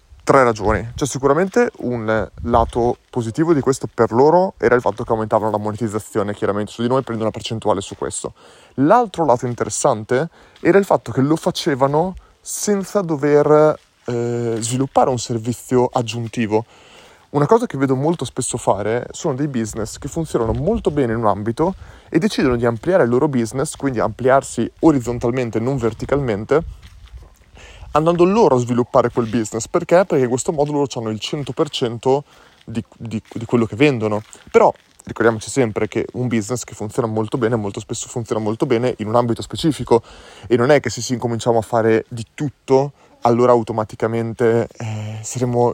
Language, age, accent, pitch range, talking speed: Italian, 30-49, native, 115-140 Hz, 170 wpm